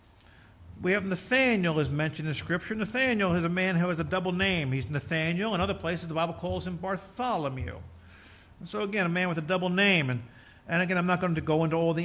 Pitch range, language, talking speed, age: 155-215 Hz, English, 225 wpm, 50-69